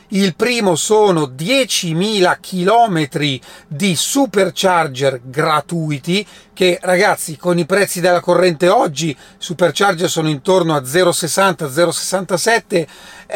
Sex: male